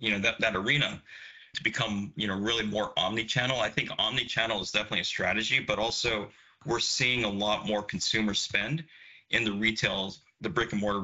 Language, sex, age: English, male, 30-49